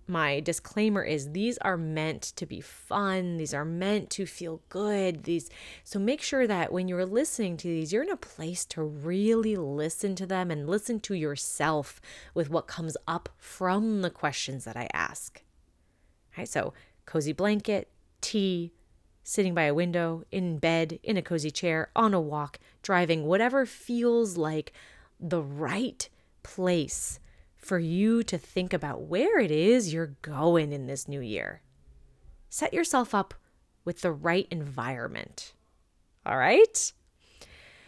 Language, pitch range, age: English, 145-195 Hz, 20-39